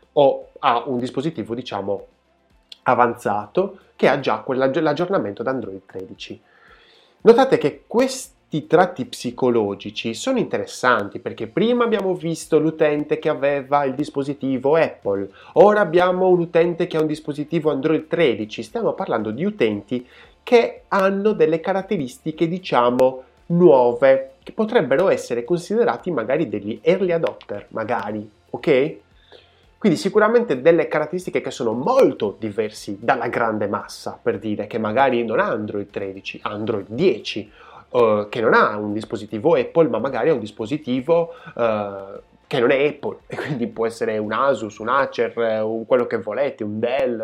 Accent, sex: native, male